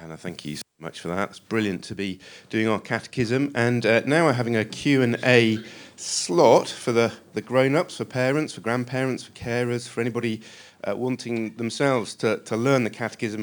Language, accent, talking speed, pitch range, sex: English, British, 200 wpm, 105-125 Hz, male